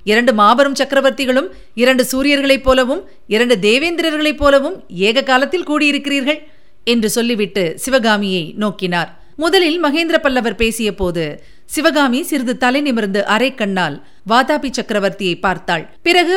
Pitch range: 195-280 Hz